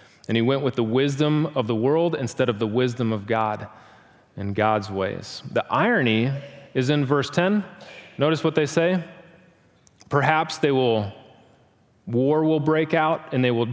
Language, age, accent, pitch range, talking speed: English, 30-49, American, 110-140 Hz, 165 wpm